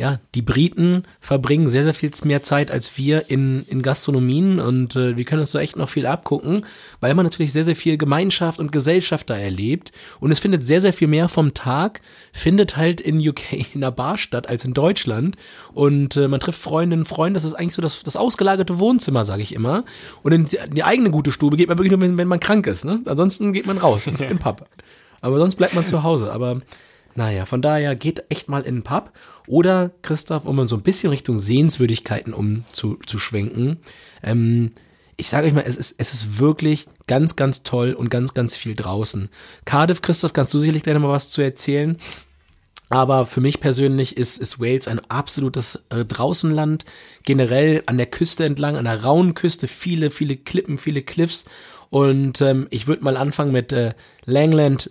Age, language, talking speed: 30-49, German, 200 wpm